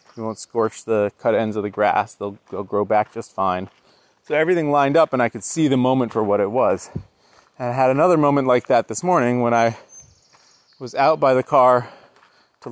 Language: English